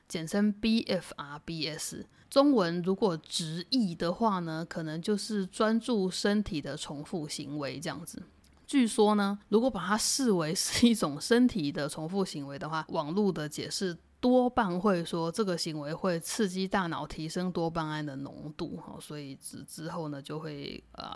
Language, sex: Chinese, female